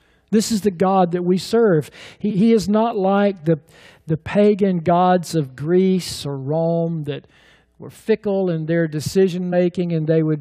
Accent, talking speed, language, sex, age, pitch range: American, 175 wpm, English, male, 50-69, 155-205 Hz